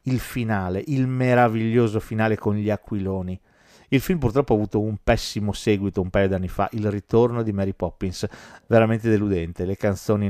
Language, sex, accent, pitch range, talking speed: Italian, male, native, 100-130 Hz, 175 wpm